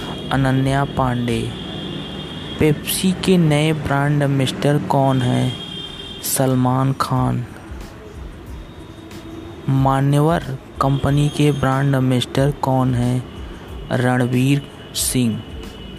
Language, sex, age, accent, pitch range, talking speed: Hindi, male, 20-39, native, 120-140 Hz, 75 wpm